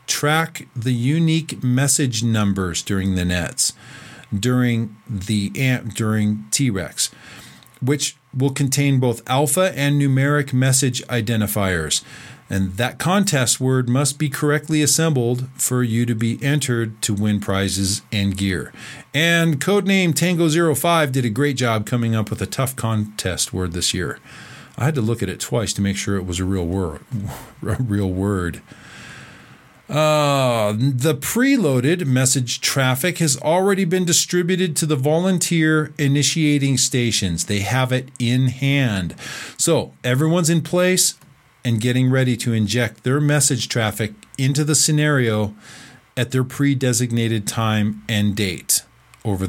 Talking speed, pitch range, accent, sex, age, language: 140 wpm, 110-150 Hz, American, male, 40-59, English